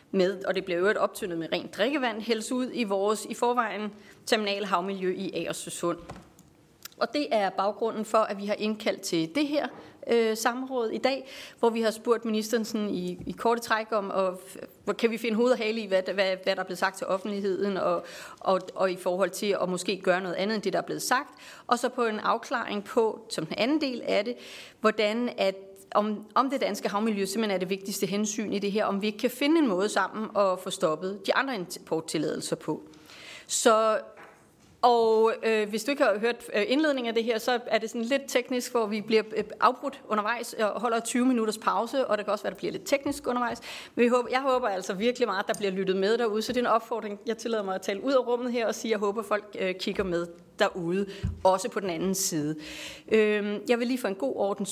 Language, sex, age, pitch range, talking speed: Danish, female, 30-49, 195-240 Hz, 230 wpm